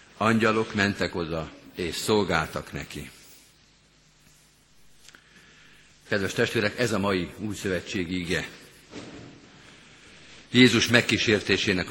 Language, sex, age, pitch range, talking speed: Hungarian, male, 50-69, 90-110 Hz, 80 wpm